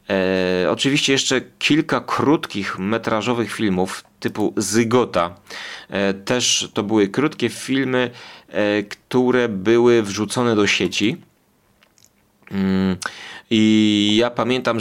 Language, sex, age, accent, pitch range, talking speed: Polish, male, 30-49, native, 105-125 Hz, 100 wpm